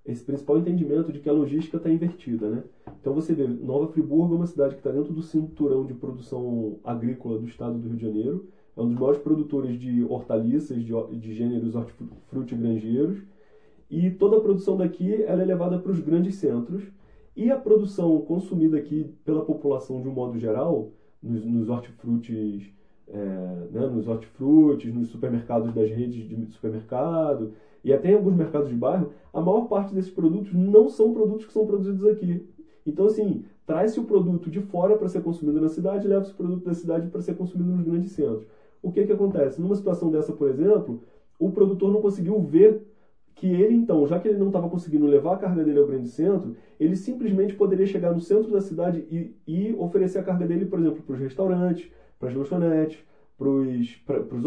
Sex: male